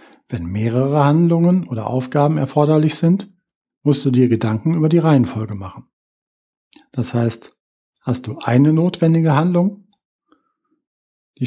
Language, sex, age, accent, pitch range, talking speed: German, male, 40-59, German, 120-160 Hz, 120 wpm